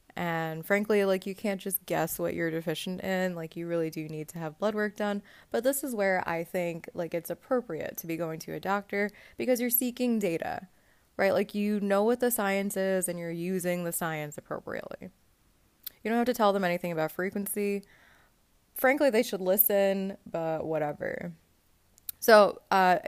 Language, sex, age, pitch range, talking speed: English, female, 20-39, 170-215 Hz, 185 wpm